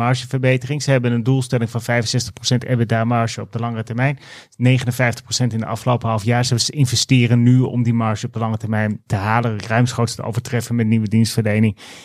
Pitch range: 115-135 Hz